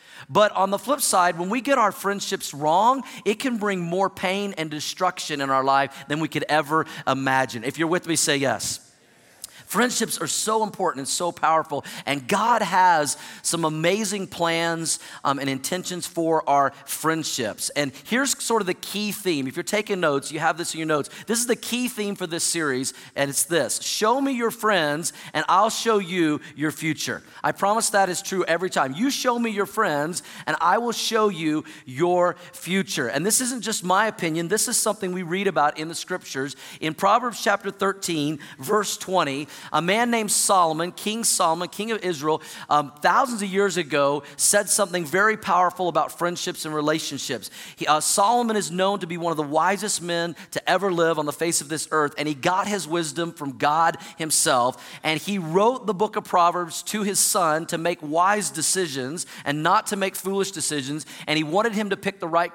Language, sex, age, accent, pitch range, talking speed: English, male, 40-59, American, 155-200 Hz, 200 wpm